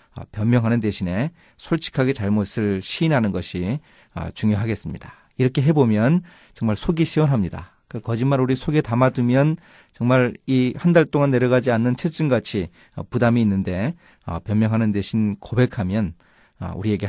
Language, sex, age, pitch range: Korean, male, 40-59, 100-135 Hz